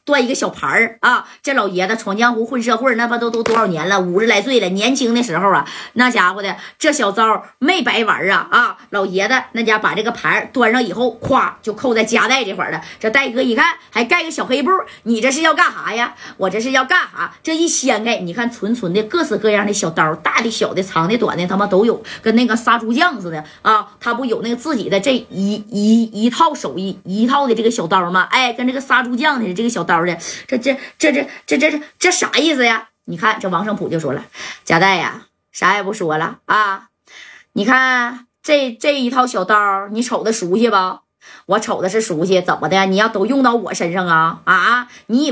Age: 20-39